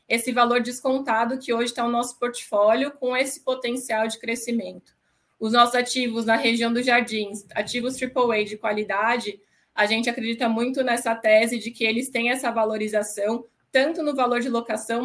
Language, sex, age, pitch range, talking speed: Portuguese, female, 20-39, 210-240 Hz, 170 wpm